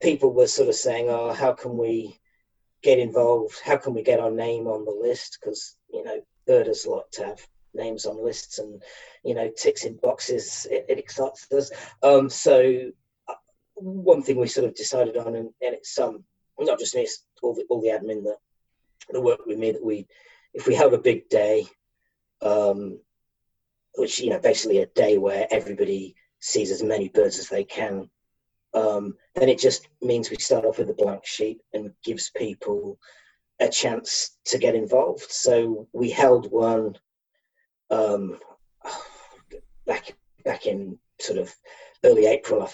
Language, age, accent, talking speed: English, 40-59, British, 175 wpm